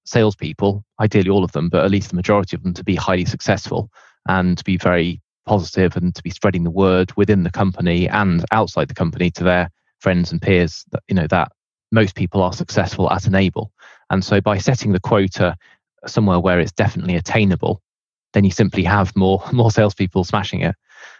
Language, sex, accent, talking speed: English, male, British, 190 wpm